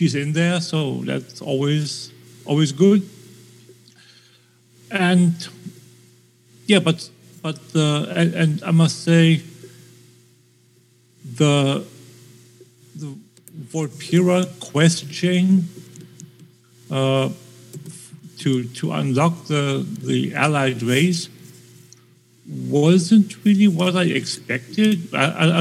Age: 50-69